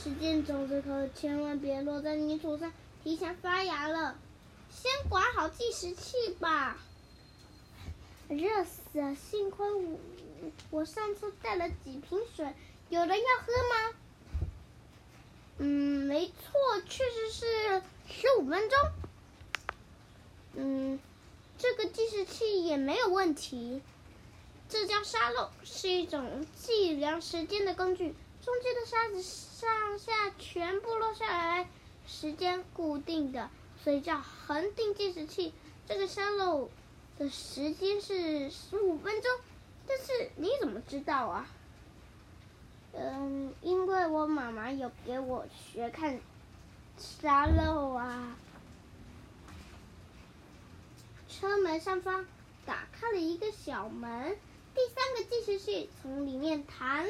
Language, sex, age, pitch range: Chinese, female, 10-29, 295-415 Hz